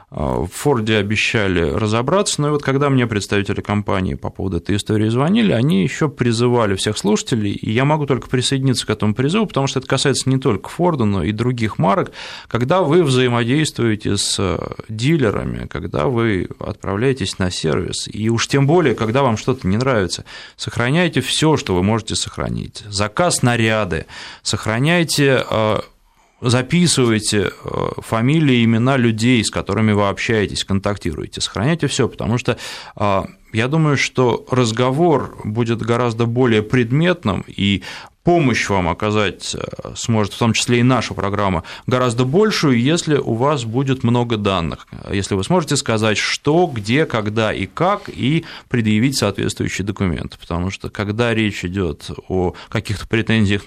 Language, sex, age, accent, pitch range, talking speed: Russian, male, 20-39, native, 100-130 Hz, 145 wpm